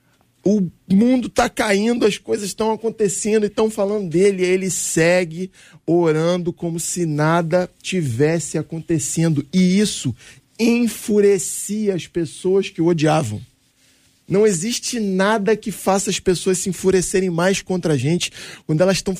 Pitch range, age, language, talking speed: 155-205 Hz, 20-39, Portuguese, 140 wpm